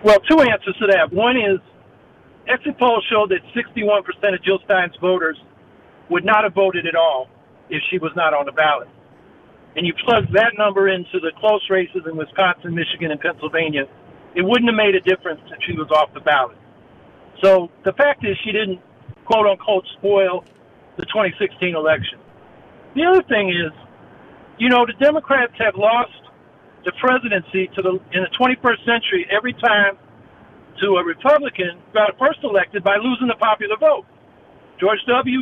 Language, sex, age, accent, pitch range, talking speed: English, male, 50-69, American, 185-235 Hz, 165 wpm